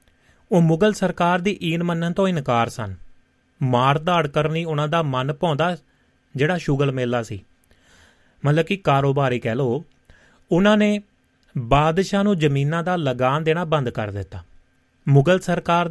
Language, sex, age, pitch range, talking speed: Punjabi, male, 30-49, 125-170 Hz, 130 wpm